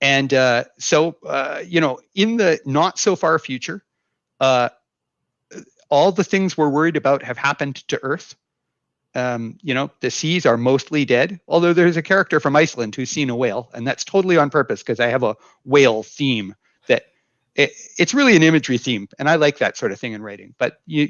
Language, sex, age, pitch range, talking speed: English, male, 40-59, 125-165 Hz, 200 wpm